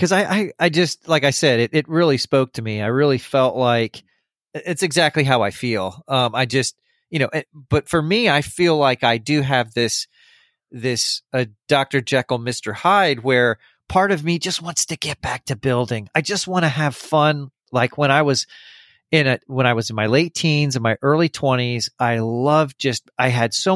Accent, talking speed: American, 215 wpm